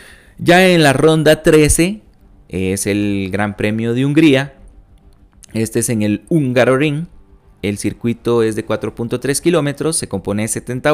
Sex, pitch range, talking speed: male, 100-125 Hz, 145 wpm